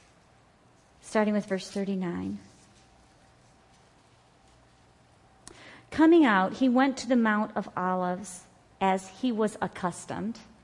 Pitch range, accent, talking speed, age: 180-245 Hz, American, 95 wpm, 40-59